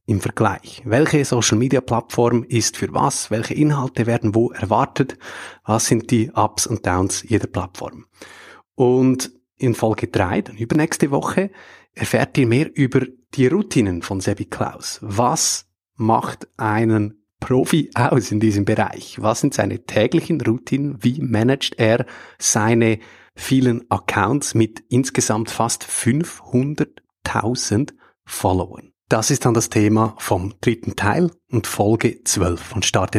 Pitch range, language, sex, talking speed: 110-135 Hz, German, male, 130 wpm